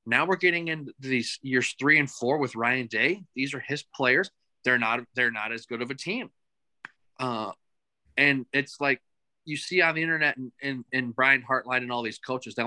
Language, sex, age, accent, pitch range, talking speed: English, male, 20-39, American, 125-160 Hz, 200 wpm